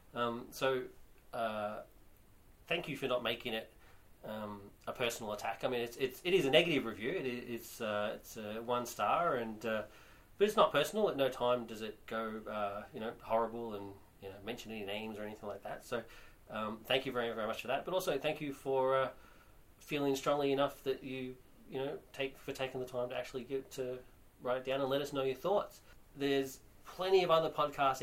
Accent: Australian